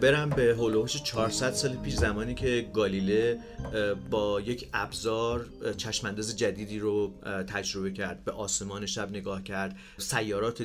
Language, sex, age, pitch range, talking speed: Persian, male, 40-59, 105-130 Hz, 130 wpm